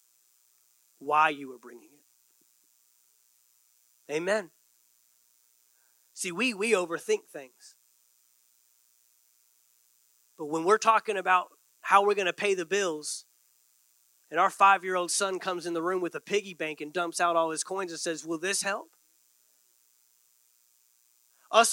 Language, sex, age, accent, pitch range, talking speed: English, male, 30-49, American, 185-290 Hz, 130 wpm